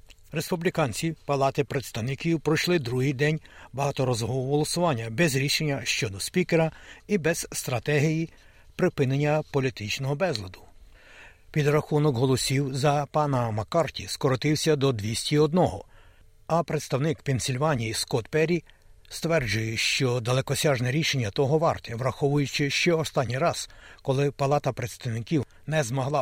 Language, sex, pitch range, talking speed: Ukrainian, male, 130-160 Hz, 110 wpm